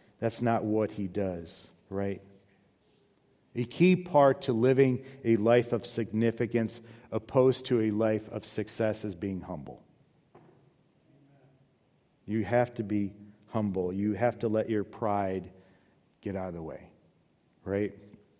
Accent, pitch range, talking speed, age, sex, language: American, 100-120 Hz, 135 wpm, 40-59, male, English